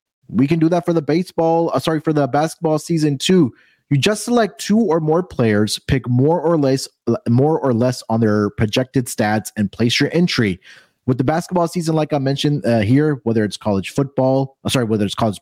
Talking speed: 210 wpm